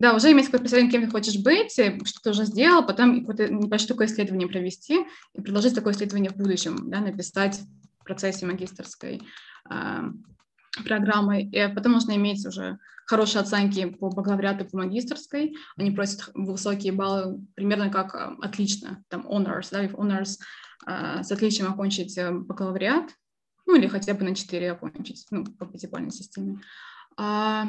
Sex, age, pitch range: female, 20-39, 190-235 Hz